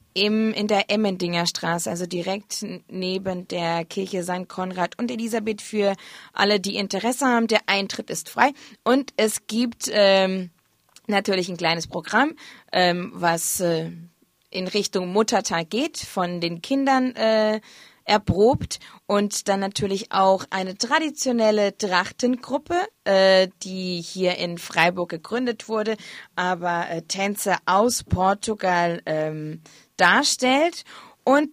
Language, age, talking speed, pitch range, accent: German, 20-39, 125 wpm, 180-235 Hz, German